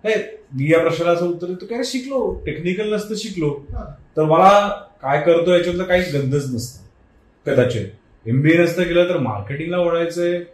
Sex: male